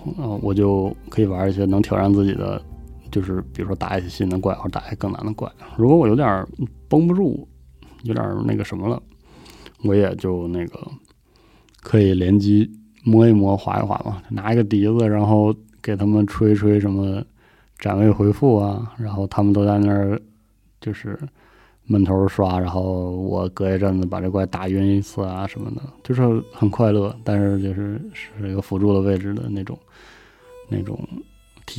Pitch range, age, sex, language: 100-115 Hz, 20-39, male, Chinese